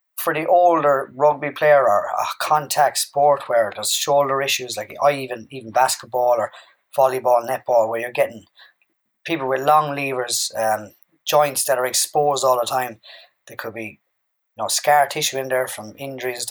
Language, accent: English, Irish